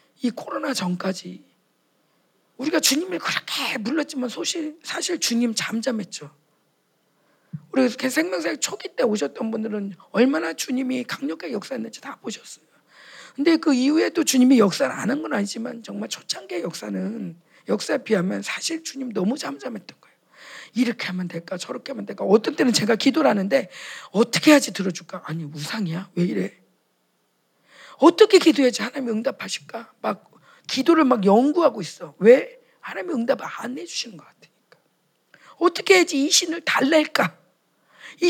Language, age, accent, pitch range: Korean, 40-59, native, 215-325 Hz